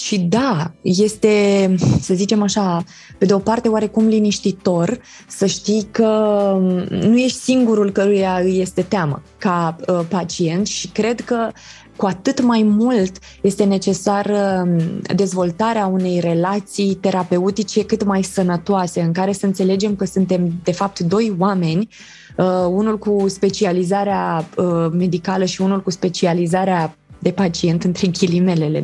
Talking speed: 130 wpm